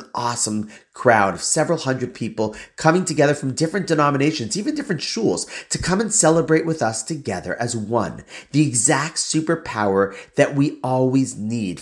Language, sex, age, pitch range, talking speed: English, male, 30-49, 115-155 Hz, 150 wpm